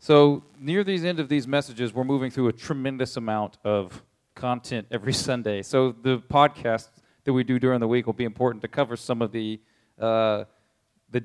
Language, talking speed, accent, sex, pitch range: English, 190 wpm, American, male, 120-145 Hz